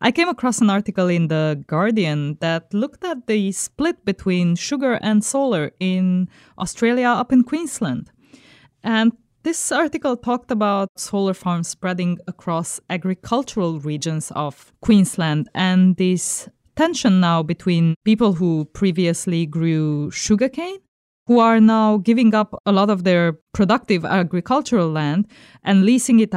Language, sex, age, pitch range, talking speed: English, female, 20-39, 165-215 Hz, 135 wpm